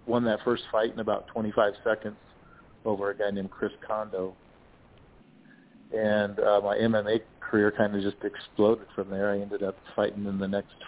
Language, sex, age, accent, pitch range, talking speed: English, male, 50-69, American, 100-110 Hz, 175 wpm